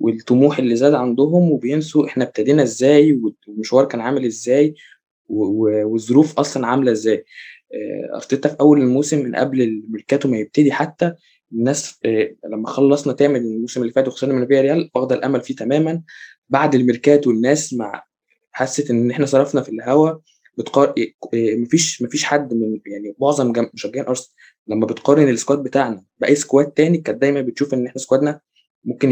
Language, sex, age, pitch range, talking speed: Arabic, male, 20-39, 115-150 Hz, 160 wpm